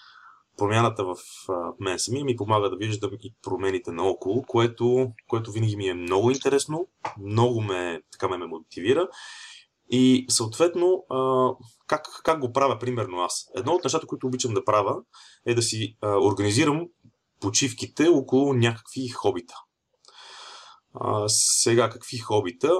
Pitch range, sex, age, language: 105-130 Hz, male, 30-49, Bulgarian